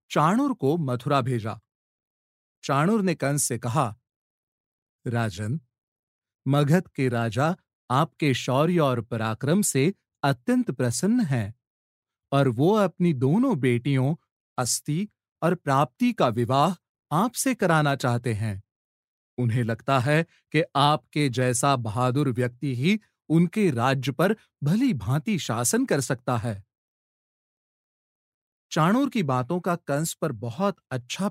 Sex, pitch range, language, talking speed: male, 125-175 Hz, Hindi, 115 wpm